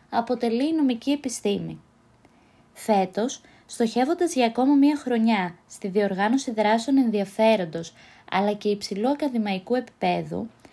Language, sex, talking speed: Greek, female, 105 wpm